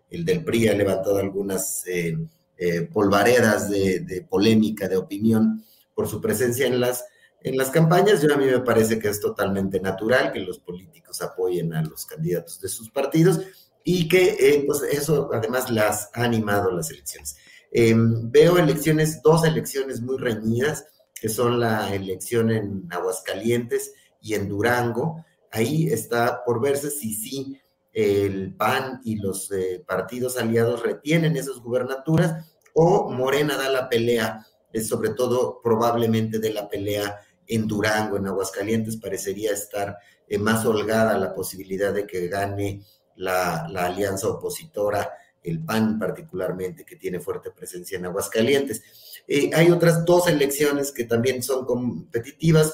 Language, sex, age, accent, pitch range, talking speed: Spanish, male, 40-59, Mexican, 100-135 Hz, 150 wpm